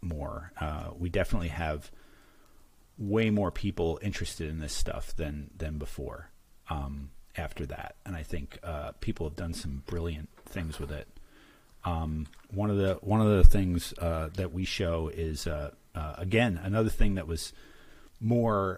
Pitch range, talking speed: 85-110 Hz, 165 wpm